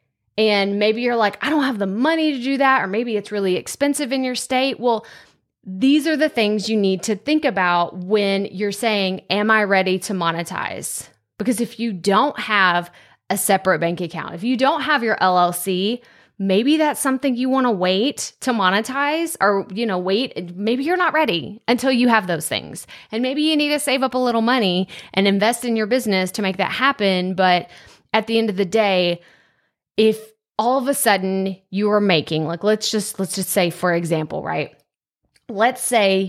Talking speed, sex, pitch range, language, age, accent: 195 wpm, female, 195-255 Hz, English, 20-39, American